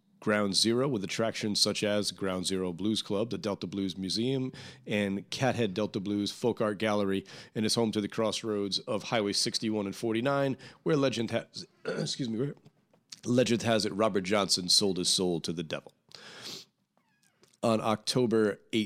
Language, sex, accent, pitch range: English, male, American, 100-125 Hz